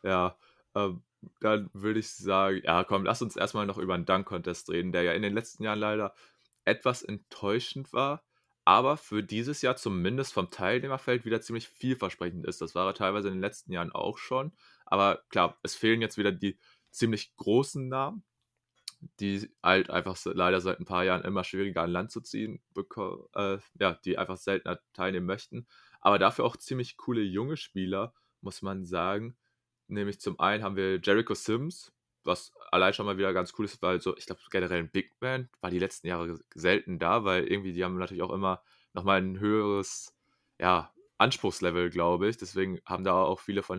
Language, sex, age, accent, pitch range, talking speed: German, male, 20-39, German, 95-115 Hz, 190 wpm